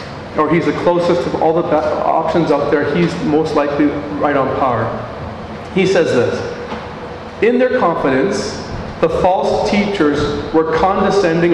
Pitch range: 130-170 Hz